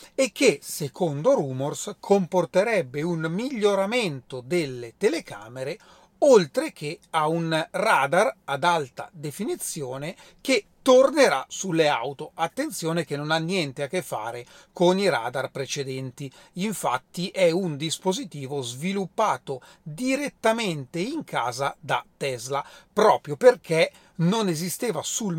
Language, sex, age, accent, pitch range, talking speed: Italian, male, 30-49, native, 150-210 Hz, 115 wpm